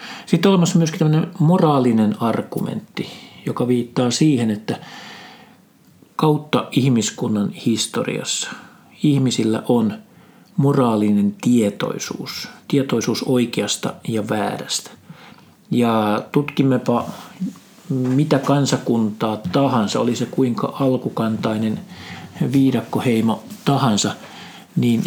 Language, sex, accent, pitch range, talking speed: Finnish, male, native, 120-160 Hz, 80 wpm